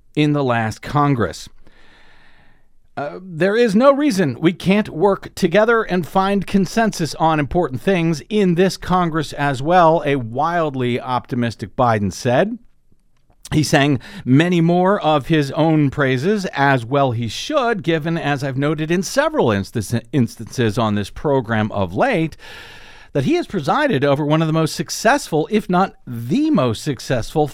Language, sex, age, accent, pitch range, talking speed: English, male, 50-69, American, 135-195 Hz, 150 wpm